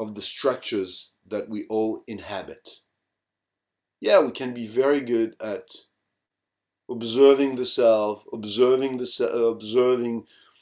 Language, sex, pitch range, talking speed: French, male, 100-115 Hz, 100 wpm